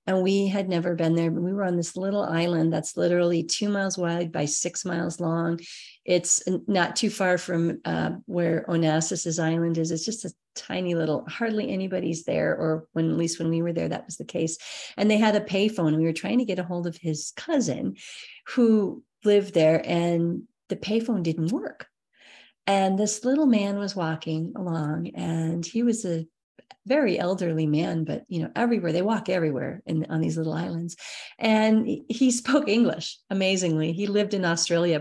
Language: English